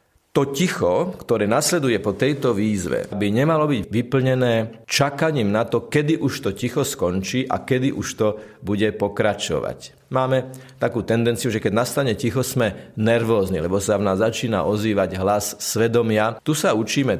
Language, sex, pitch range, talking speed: Slovak, male, 105-135 Hz, 155 wpm